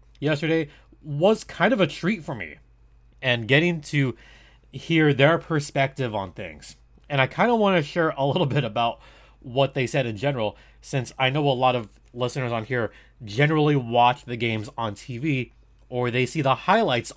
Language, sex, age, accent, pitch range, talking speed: English, male, 30-49, American, 115-150 Hz, 180 wpm